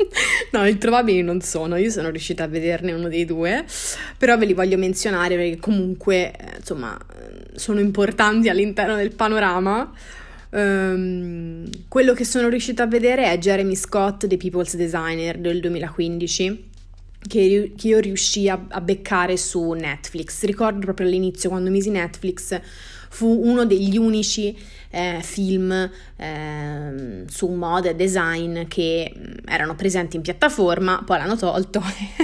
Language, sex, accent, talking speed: Italian, female, native, 140 wpm